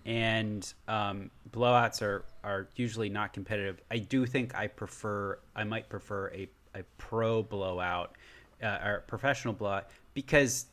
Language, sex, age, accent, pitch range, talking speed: English, male, 30-49, American, 100-125 Hz, 145 wpm